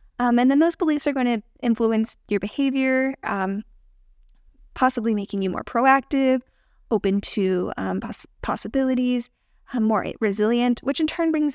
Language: English